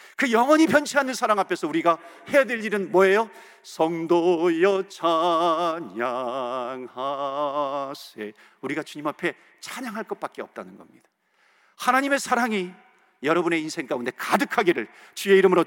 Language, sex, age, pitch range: Korean, male, 50-69, 165-245 Hz